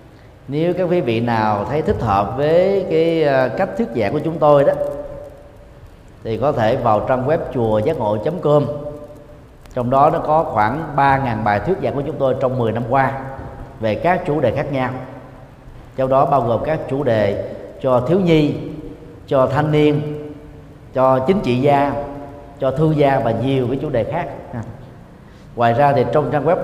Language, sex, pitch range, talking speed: Vietnamese, male, 120-155 Hz, 180 wpm